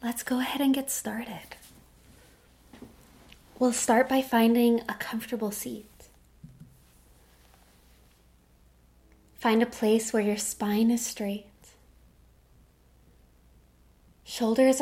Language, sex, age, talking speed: English, female, 20-39, 90 wpm